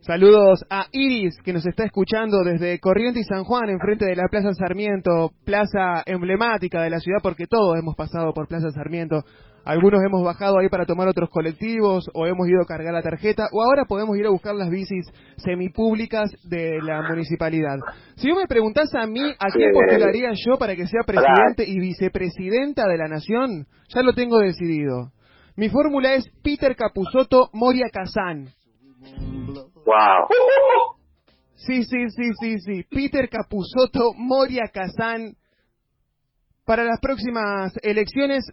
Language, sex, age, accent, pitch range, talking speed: English, male, 20-39, Argentinian, 180-235 Hz, 155 wpm